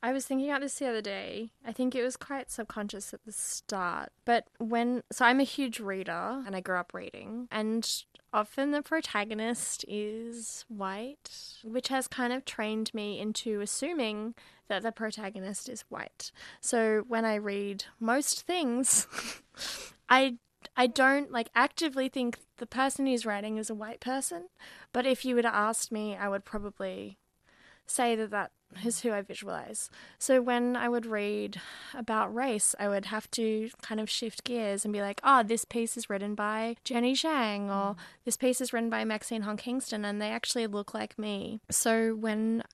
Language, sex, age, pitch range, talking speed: English, female, 20-39, 210-245 Hz, 180 wpm